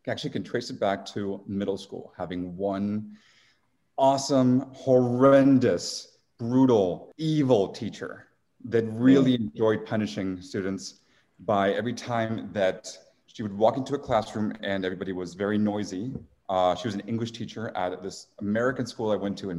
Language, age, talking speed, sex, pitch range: English, 30-49, 150 wpm, male, 100-120 Hz